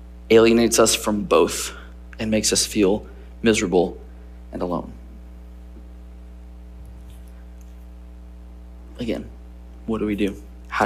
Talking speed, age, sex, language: 95 wpm, 20-39, male, English